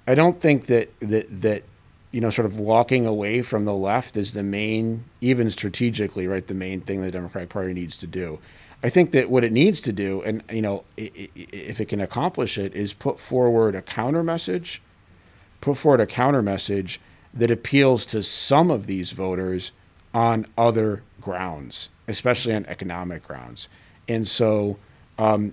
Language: English